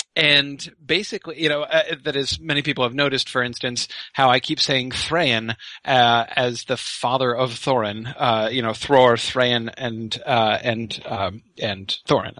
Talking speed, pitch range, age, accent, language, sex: 170 wpm, 120-150 Hz, 30-49, American, English, male